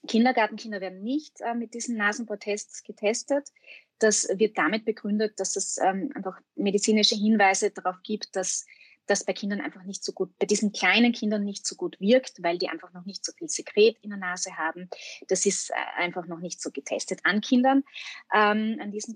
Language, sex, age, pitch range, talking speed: German, female, 20-39, 185-225 Hz, 190 wpm